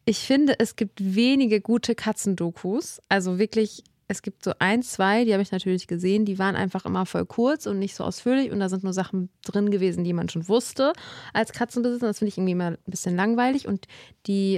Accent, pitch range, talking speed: German, 185-225 Hz, 215 wpm